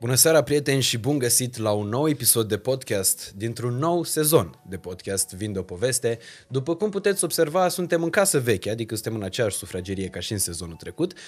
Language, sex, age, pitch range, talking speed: Romanian, male, 20-39, 105-155 Hz, 200 wpm